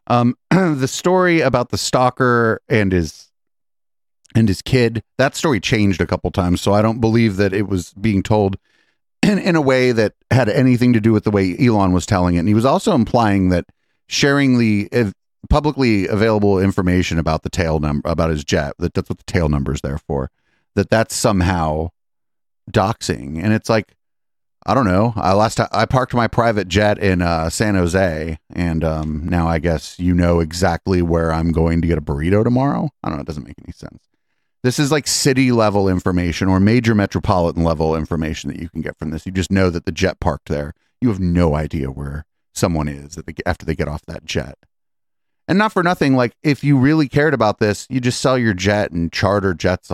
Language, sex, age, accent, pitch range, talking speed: English, male, 30-49, American, 85-115 Hz, 200 wpm